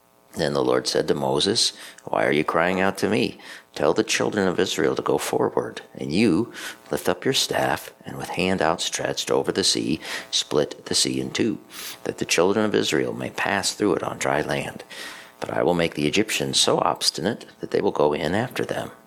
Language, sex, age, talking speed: English, male, 50-69, 210 wpm